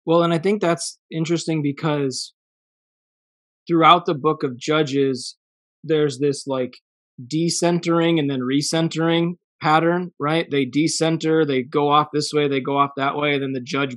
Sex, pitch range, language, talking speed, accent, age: male, 140-165 Hz, English, 155 wpm, American, 20-39